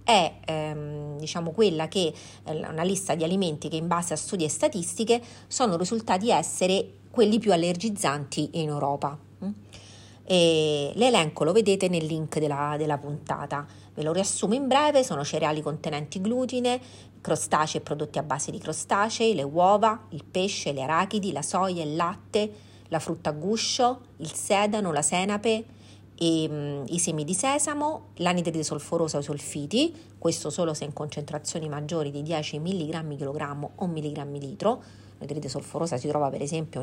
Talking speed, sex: 160 wpm, female